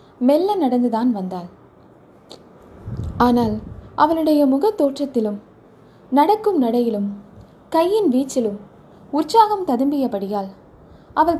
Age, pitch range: 20-39, 220-295 Hz